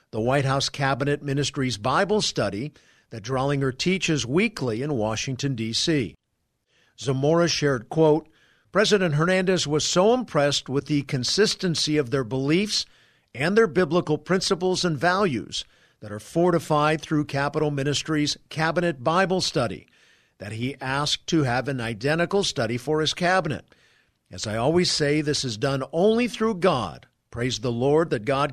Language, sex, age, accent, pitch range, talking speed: English, male, 50-69, American, 135-170 Hz, 145 wpm